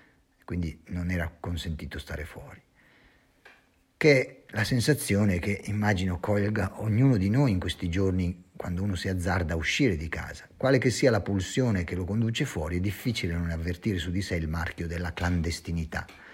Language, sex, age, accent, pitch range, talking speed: Italian, male, 50-69, native, 90-115 Hz, 175 wpm